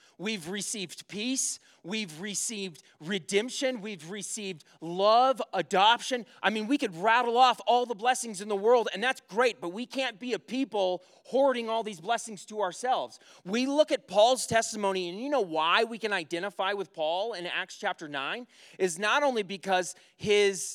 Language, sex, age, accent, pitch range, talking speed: English, male, 30-49, American, 190-240 Hz, 175 wpm